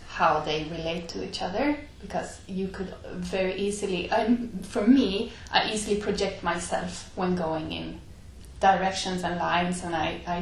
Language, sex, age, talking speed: Finnish, female, 20-39, 155 wpm